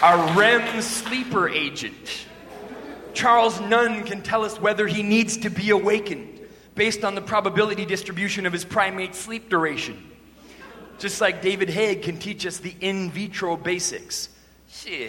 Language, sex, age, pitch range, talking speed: English, male, 30-49, 195-230 Hz, 145 wpm